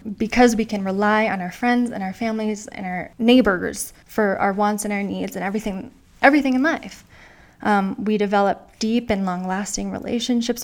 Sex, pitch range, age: female, 200-240 Hz, 20-39